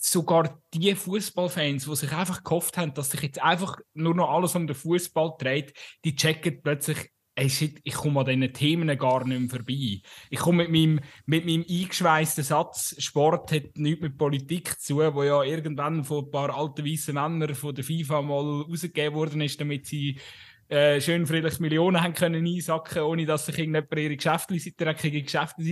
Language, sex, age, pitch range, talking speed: German, male, 20-39, 145-170 Hz, 190 wpm